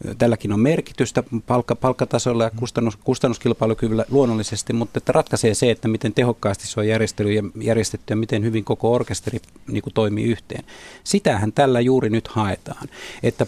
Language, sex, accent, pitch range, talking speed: Finnish, male, native, 105-130 Hz, 140 wpm